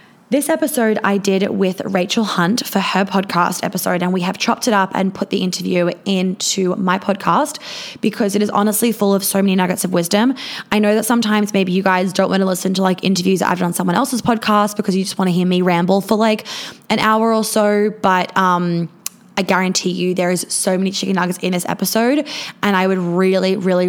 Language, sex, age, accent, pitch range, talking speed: English, female, 20-39, Australian, 180-210 Hz, 220 wpm